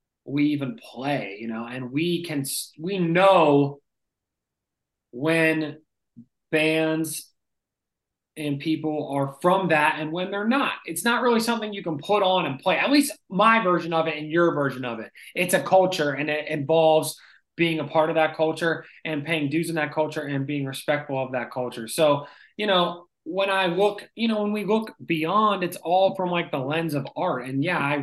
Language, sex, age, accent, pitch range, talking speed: English, male, 20-39, American, 140-180 Hz, 190 wpm